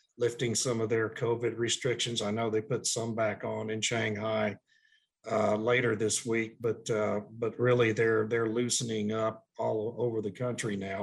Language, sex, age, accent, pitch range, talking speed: English, male, 50-69, American, 115-140 Hz, 175 wpm